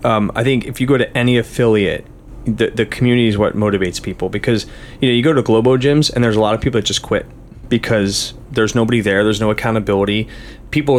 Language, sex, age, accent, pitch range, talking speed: English, male, 30-49, American, 110-135 Hz, 225 wpm